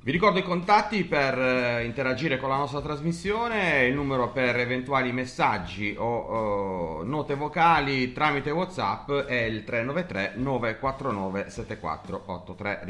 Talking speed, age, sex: 105 wpm, 30-49, male